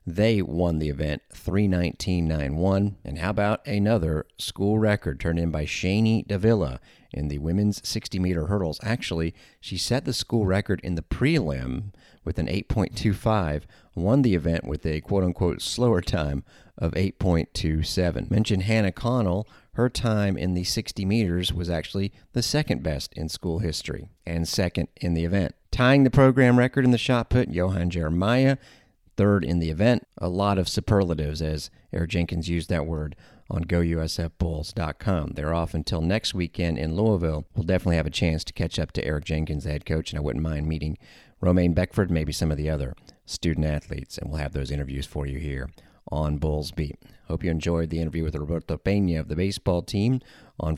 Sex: male